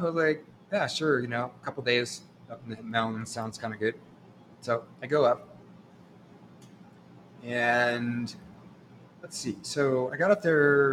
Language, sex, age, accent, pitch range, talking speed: English, male, 30-49, American, 115-160 Hz, 165 wpm